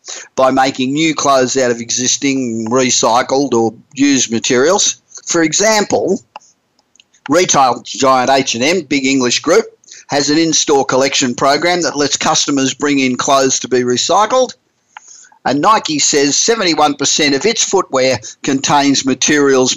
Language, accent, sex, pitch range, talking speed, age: English, Australian, male, 125-150 Hz, 130 wpm, 50-69